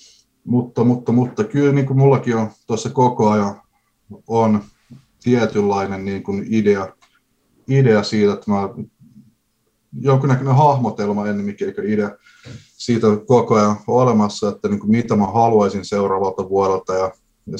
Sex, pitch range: male, 105-125 Hz